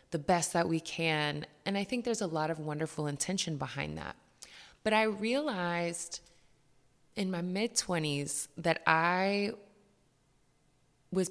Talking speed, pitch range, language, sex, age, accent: 125 wpm, 145-185 Hz, English, female, 20-39, American